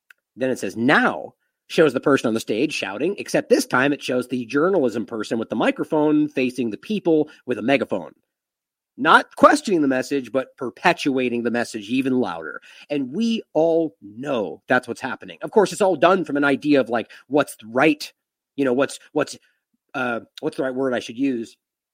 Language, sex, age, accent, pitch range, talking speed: English, male, 40-59, American, 145-205 Hz, 185 wpm